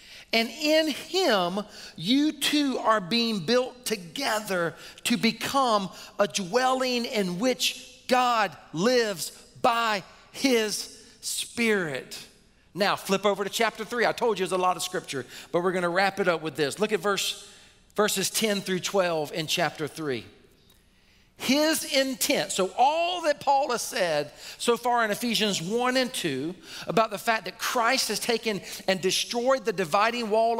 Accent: American